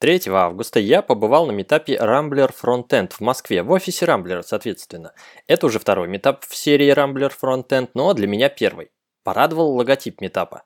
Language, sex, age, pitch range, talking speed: Russian, male, 20-39, 115-155 Hz, 165 wpm